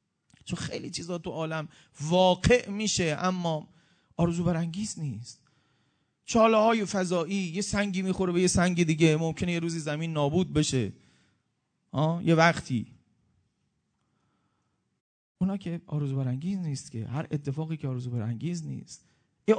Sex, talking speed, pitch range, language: male, 130 wpm, 140-190 Hz, Persian